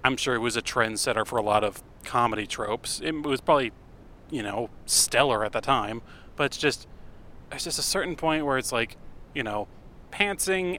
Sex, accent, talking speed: male, American, 195 wpm